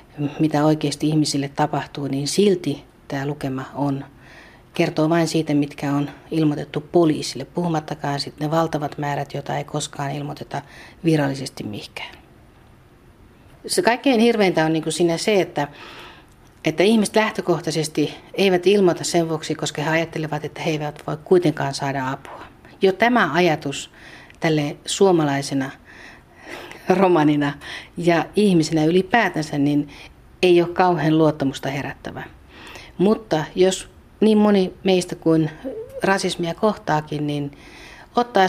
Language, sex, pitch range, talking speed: Finnish, female, 145-180 Hz, 120 wpm